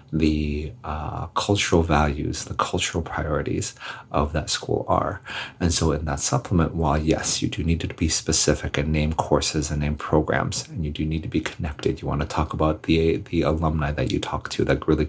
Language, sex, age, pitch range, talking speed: English, male, 30-49, 75-85 Hz, 205 wpm